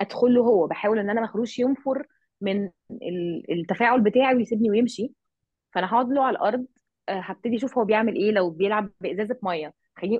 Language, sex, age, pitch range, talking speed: Arabic, female, 20-39, 195-245 Hz, 155 wpm